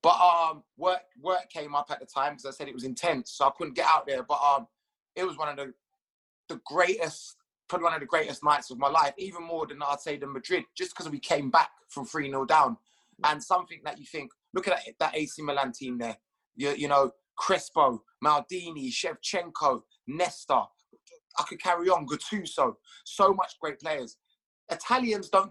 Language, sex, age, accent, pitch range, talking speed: English, male, 20-39, British, 155-220 Hz, 200 wpm